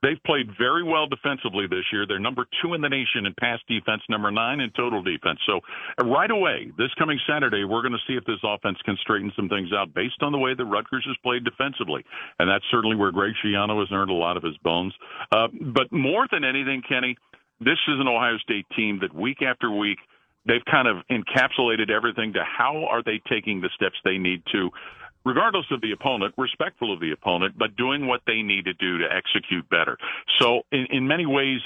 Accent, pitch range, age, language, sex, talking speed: American, 105-130 Hz, 50-69, English, male, 220 wpm